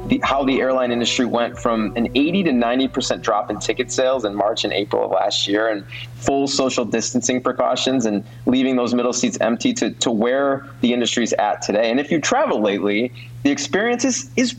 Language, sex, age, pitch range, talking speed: English, male, 30-49, 120-150 Hz, 200 wpm